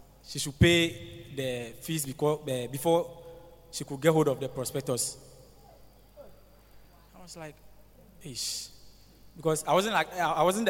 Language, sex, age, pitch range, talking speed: English, male, 20-39, 125-155 Hz, 130 wpm